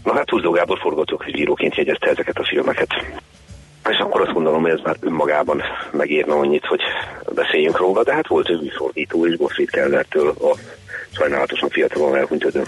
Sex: male